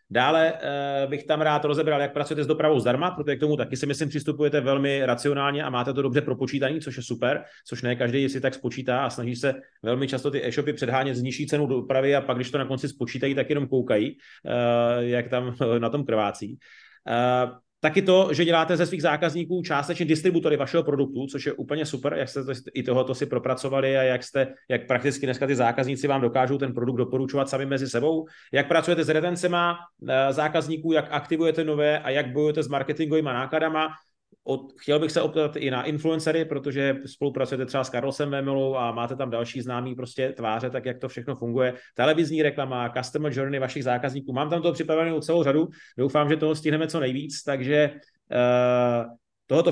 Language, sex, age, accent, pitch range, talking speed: Czech, male, 30-49, native, 130-155 Hz, 195 wpm